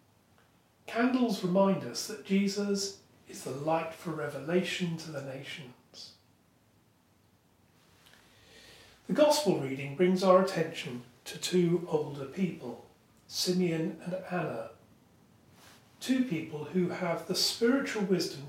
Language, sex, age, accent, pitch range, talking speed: English, male, 40-59, British, 140-195 Hz, 105 wpm